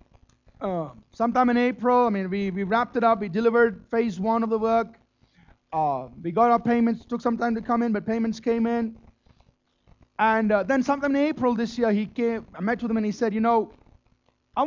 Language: English